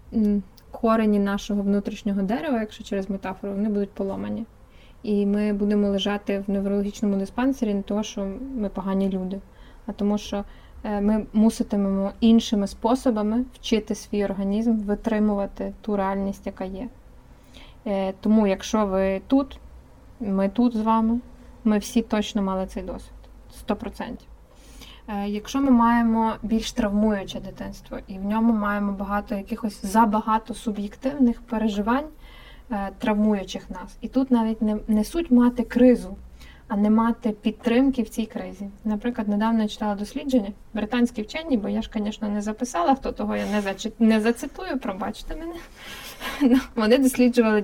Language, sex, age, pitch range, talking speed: Ukrainian, female, 20-39, 200-230 Hz, 135 wpm